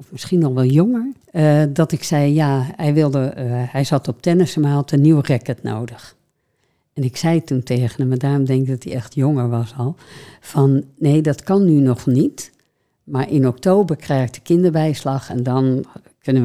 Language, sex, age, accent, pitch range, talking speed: Dutch, female, 60-79, Dutch, 130-155 Hz, 200 wpm